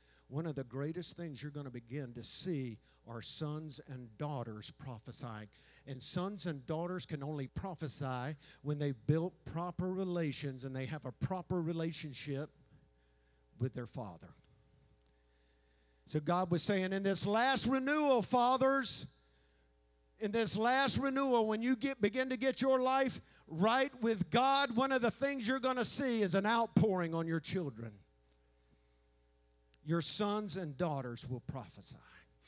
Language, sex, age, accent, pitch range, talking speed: English, male, 50-69, American, 115-180 Hz, 150 wpm